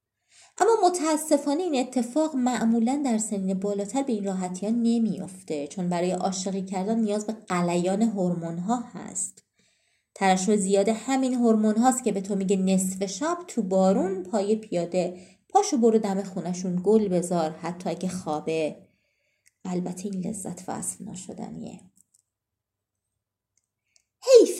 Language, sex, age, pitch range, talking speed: Persian, female, 30-49, 185-250 Hz, 125 wpm